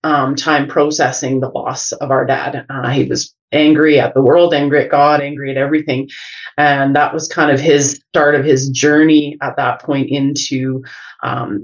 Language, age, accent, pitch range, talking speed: English, 30-49, American, 140-160 Hz, 185 wpm